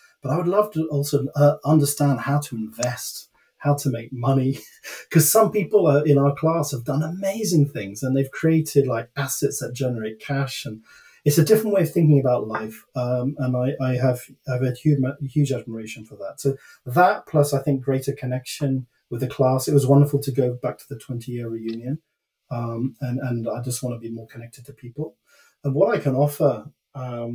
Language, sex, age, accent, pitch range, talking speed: English, male, 30-49, British, 125-145 Hz, 205 wpm